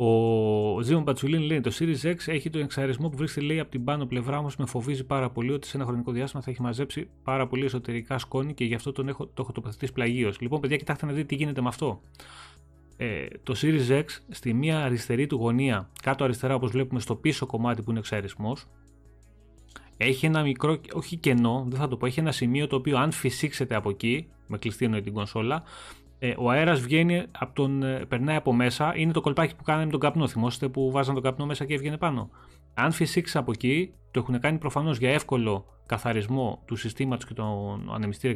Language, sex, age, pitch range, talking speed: Greek, male, 30-49, 115-150 Hz, 200 wpm